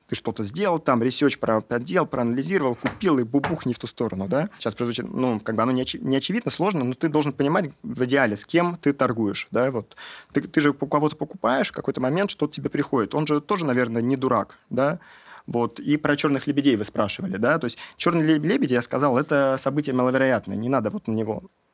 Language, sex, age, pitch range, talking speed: Russian, male, 30-49, 120-145 Hz, 220 wpm